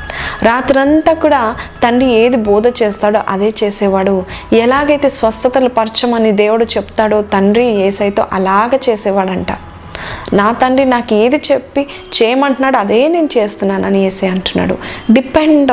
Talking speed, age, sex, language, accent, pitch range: 110 wpm, 20-39, female, Telugu, native, 195-235 Hz